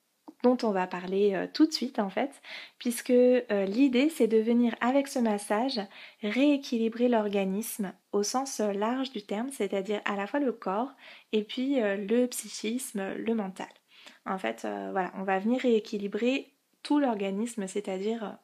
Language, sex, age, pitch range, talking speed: French, female, 20-39, 200-245 Hz, 165 wpm